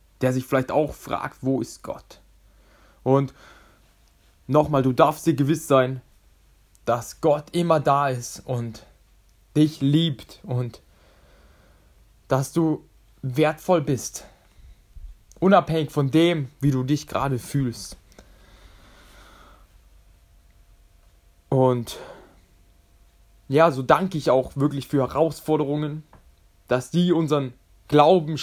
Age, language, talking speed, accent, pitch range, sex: 20-39, German, 105 wpm, German, 100-155 Hz, male